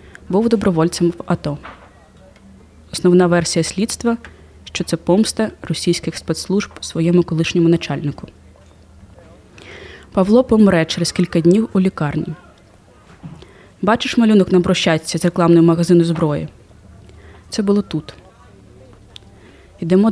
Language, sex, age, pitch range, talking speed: Ukrainian, female, 20-39, 145-190 Hz, 100 wpm